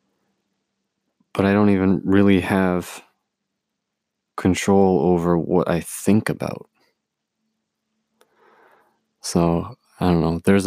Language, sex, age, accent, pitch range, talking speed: English, male, 30-49, American, 85-95 Hz, 95 wpm